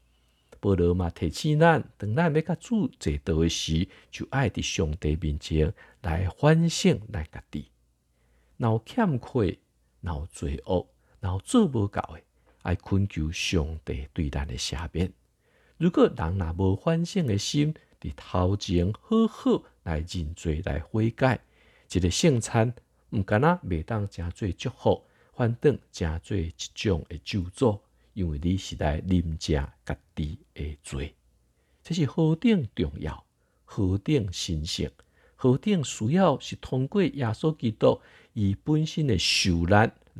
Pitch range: 80-120 Hz